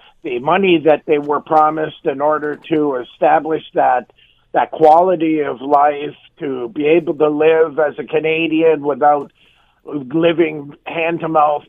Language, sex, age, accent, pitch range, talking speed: English, male, 50-69, American, 150-185 Hz, 135 wpm